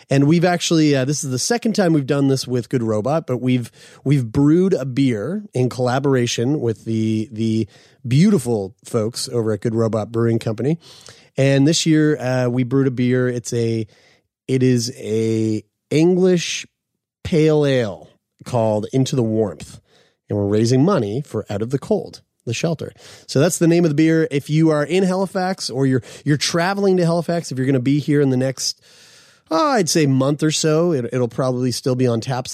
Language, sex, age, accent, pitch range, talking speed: English, male, 30-49, American, 120-160 Hz, 190 wpm